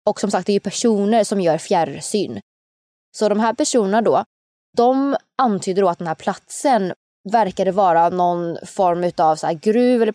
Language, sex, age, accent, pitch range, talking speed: Swedish, female, 20-39, native, 175-225 Hz, 185 wpm